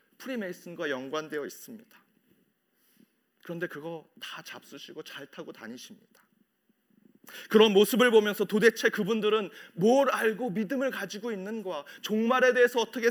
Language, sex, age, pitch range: Korean, male, 40-59, 160-225 Hz